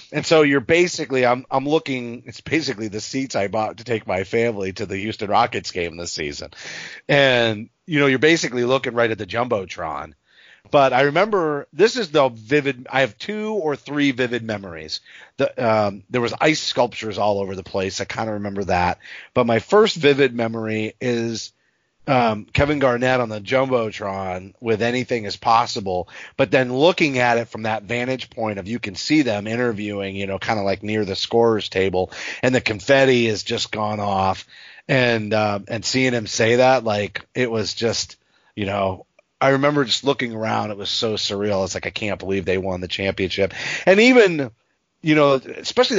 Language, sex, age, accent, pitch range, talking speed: English, male, 40-59, American, 105-135 Hz, 195 wpm